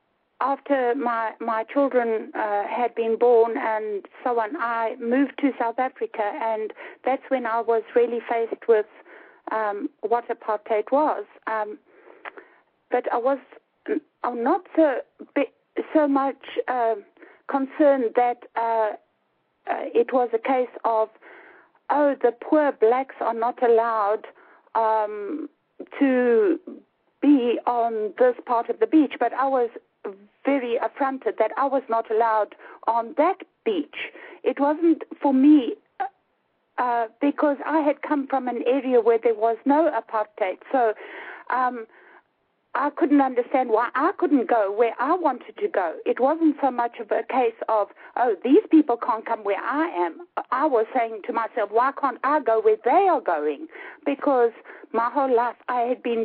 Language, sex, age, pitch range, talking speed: English, female, 60-79, 230-300 Hz, 150 wpm